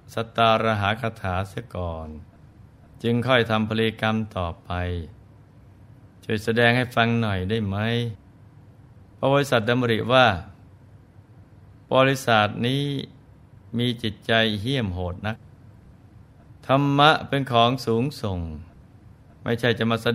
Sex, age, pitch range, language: male, 20-39, 105-125 Hz, Thai